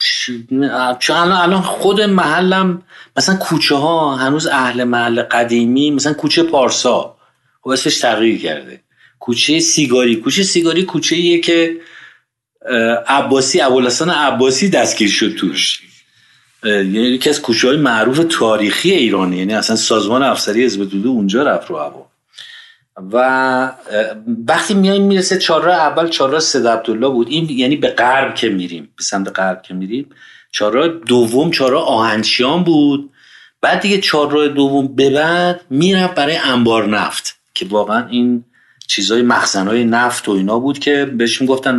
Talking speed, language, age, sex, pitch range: 135 wpm, Persian, 50-69, male, 115-165 Hz